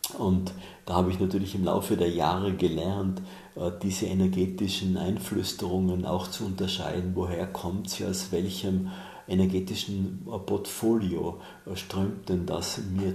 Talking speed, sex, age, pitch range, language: 125 wpm, male, 50-69, 90-95 Hz, German